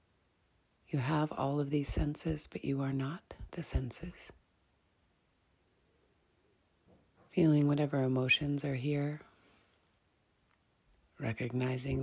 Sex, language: female, English